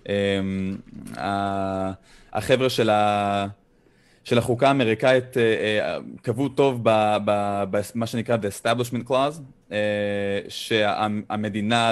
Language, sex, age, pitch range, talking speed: Hebrew, male, 20-39, 105-130 Hz, 75 wpm